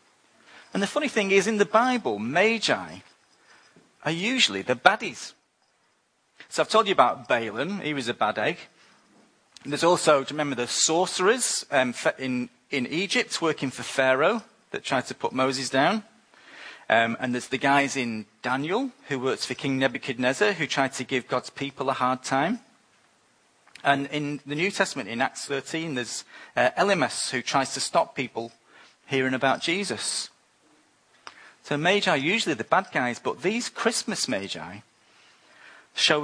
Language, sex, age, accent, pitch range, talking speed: English, male, 40-59, British, 125-160 Hz, 160 wpm